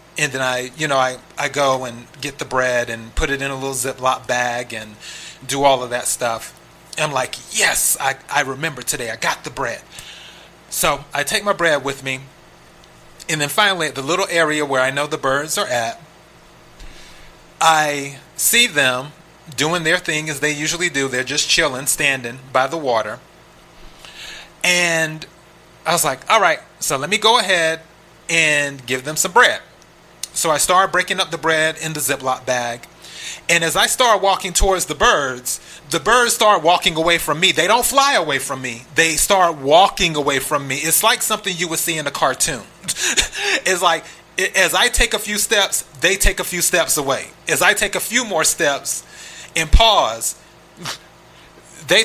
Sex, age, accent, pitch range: male, 30-49, American, 135-180 Hz